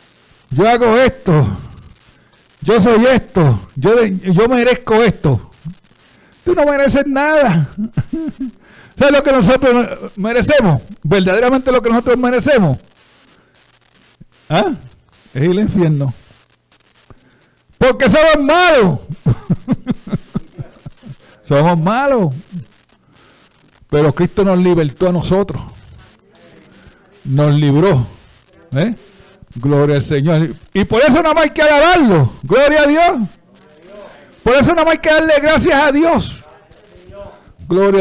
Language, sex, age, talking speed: Spanish, male, 60-79, 105 wpm